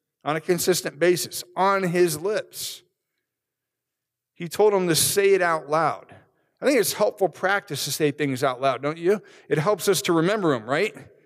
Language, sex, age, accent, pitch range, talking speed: English, male, 50-69, American, 140-195 Hz, 180 wpm